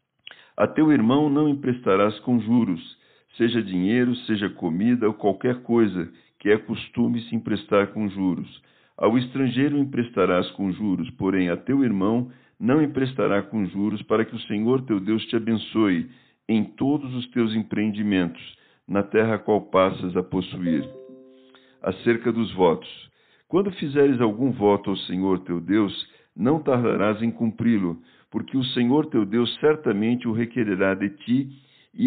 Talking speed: 150 wpm